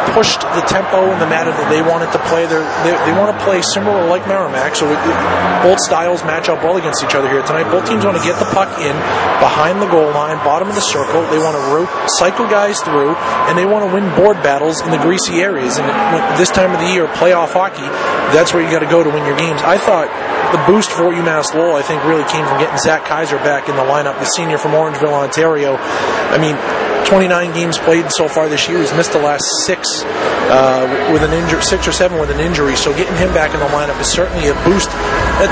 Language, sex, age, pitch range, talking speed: English, male, 30-49, 155-185 Hz, 245 wpm